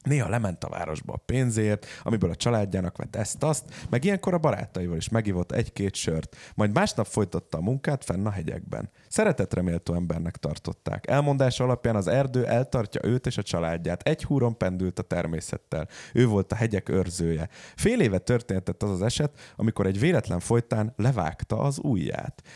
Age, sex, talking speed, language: 30-49, male, 160 wpm, Hungarian